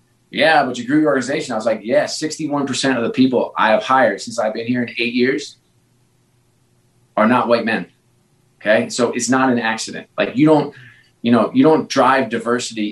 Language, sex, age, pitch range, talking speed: English, male, 30-49, 115-145 Hz, 200 wpm